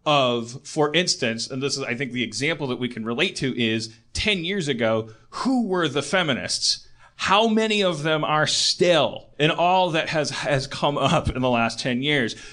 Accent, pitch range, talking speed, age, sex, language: American, 140-195 Hz, 195 wpm, 30-49, male, English